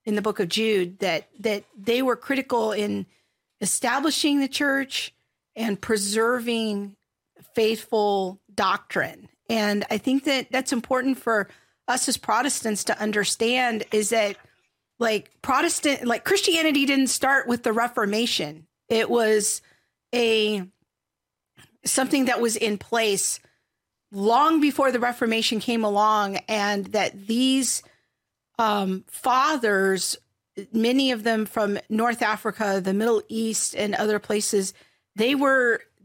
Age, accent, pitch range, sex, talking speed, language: 40-59, American, 215-255 Hz, female, 125 wpm, English